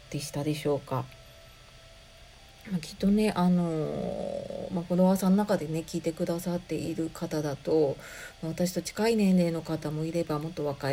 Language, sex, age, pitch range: Japanese, female, 40-59, 155-200 Hz